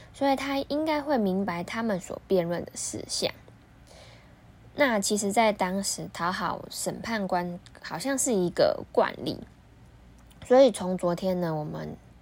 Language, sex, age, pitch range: Chinese, female, 10-29, 175-225 Hz